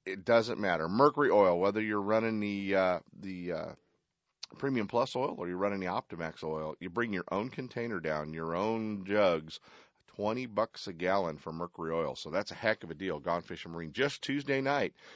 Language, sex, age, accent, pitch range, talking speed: English, male, 40-59, American, 80-115 Hz, 200 wpm